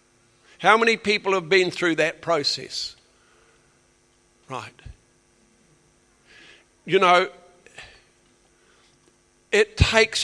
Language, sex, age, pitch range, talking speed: English, male, 60-79, 120-180 Hz, 75 wpm